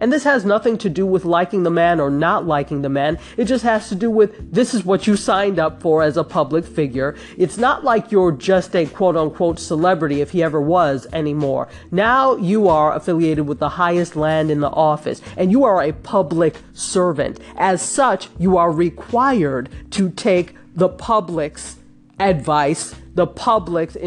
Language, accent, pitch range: English, American, 165-235 Hz